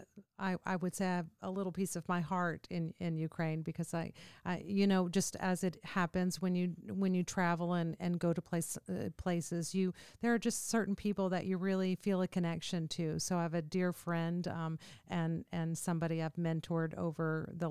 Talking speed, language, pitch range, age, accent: 215 wpm, English, 160-185 Hz, 50-69, American